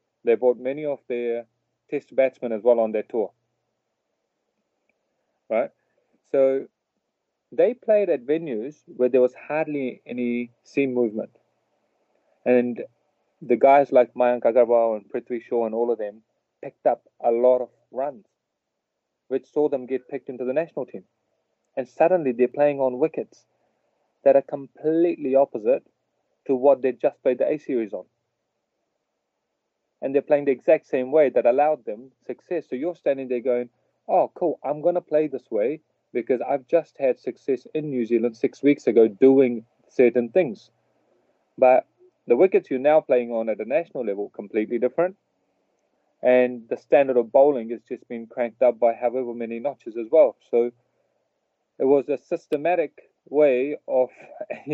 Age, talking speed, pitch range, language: 30-49, 160 wpm, 120-145 Hz, English